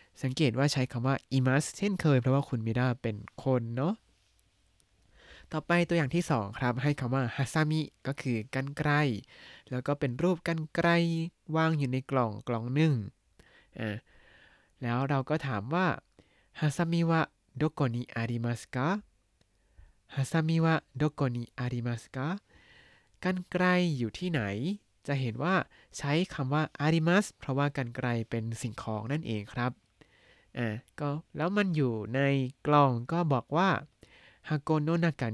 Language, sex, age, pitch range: Thai, male, 20-39, 115-160 Hz